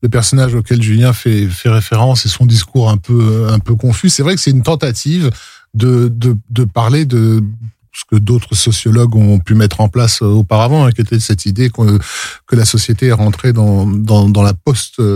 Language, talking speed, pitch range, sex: French, 200 wpm, 115-135 Hz, male